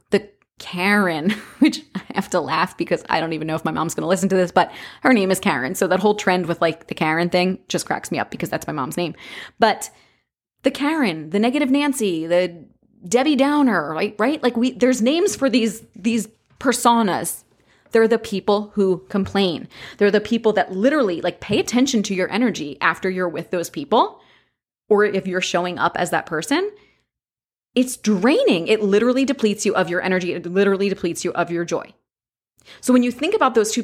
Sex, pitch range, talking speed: female, 185-255 Hz, 200 wpm